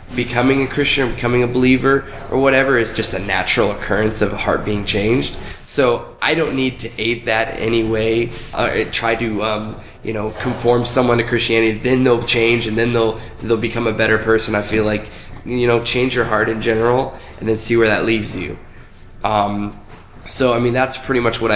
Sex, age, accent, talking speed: male, 20-39, American, 205 wpm